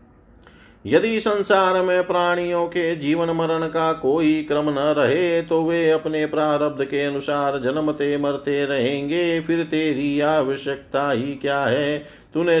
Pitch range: 135-155 Hz